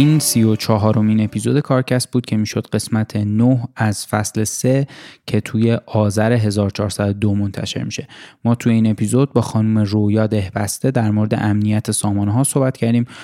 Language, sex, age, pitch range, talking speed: Persian, male, 10-29, 105-120 Hz, 150 wpm